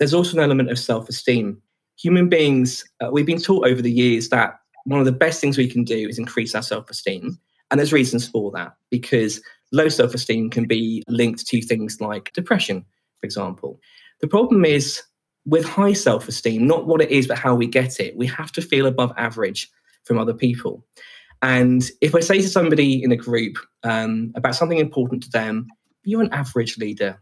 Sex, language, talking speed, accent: male, English, 195 wpm, British